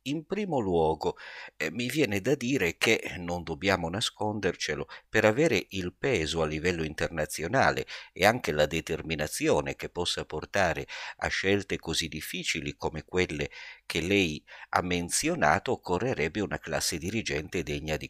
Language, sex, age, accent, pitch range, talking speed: Italian, male, 50-69, native, 75-95 Hz, 140 wpm